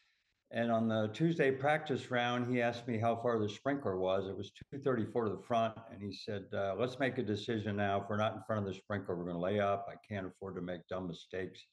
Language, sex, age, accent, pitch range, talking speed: English, male, 60-79, American, 100-120 Hz, 250 wpm